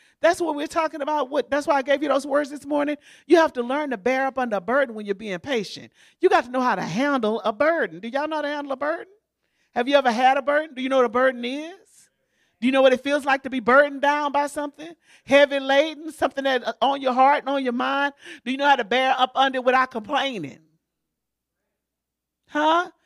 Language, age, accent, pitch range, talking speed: English, 40-59, American, 240-310 Hz, 245 wpm